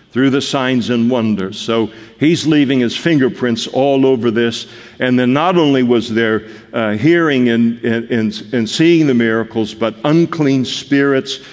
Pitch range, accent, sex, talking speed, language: 110-135 Hz, American, male, 150 wpm, English